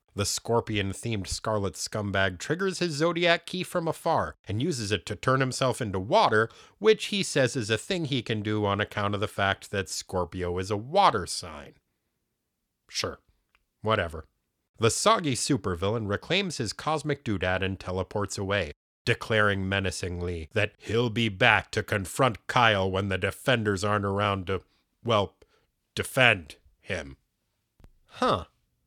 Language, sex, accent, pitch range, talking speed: English, male, American, 95-130 Hz, 145 wpm